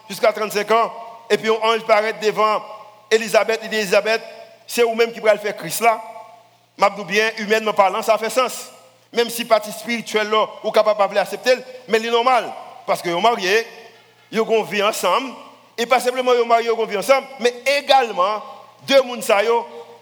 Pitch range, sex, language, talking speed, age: 205-235 Hz, male, French, 175 wpm, 50-69